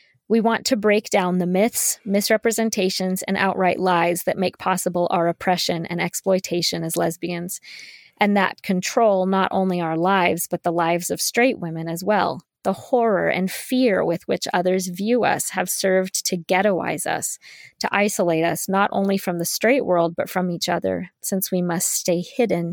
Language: English